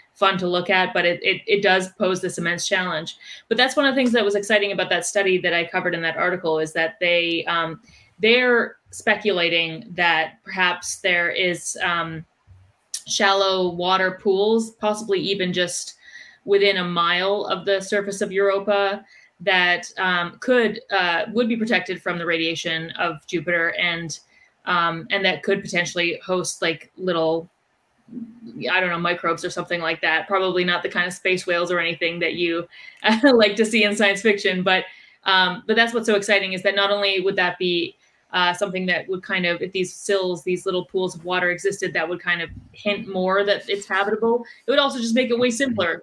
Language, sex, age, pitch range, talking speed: English, female, 20-39, 175-200 Hz, 195 wpm